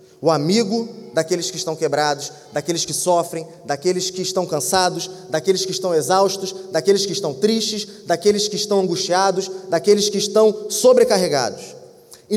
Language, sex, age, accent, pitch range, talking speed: Portuguese, male, 20-39, Brazilian, 180-230 Hz, 145 wpm